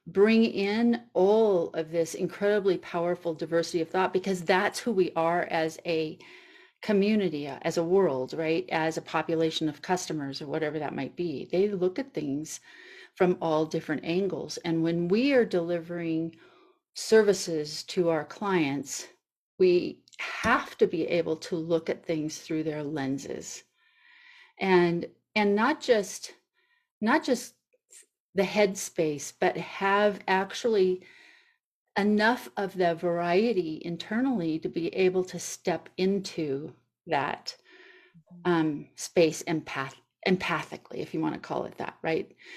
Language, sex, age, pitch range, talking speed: English, female, 40-59, 165-215 Hz, 135 wpm